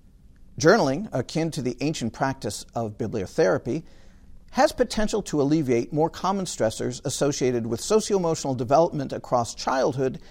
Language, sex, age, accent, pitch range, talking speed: English, male, 50-69, American, 125-185 Hz, 120 wpm